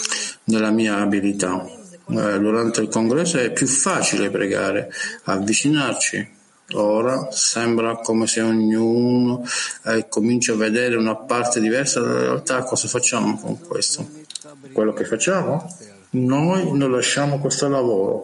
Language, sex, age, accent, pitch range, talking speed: Italian, male, 50-69, native, 110-135 Hz, 120 wpm